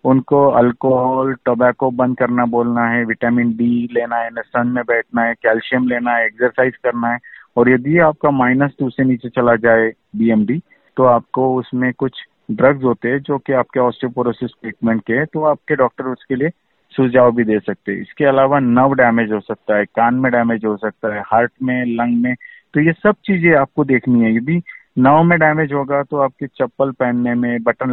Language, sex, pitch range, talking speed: Hindi, male, 120-135 Hz, 190 wpm